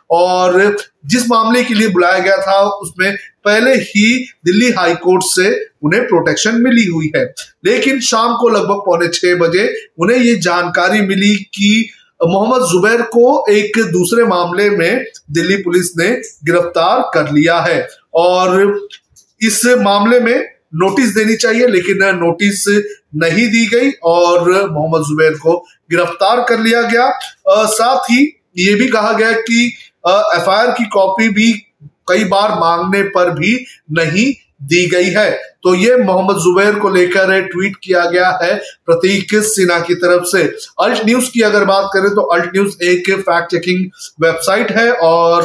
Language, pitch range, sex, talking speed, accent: Hindi, 175-225 Hz, male, 155 wpm, native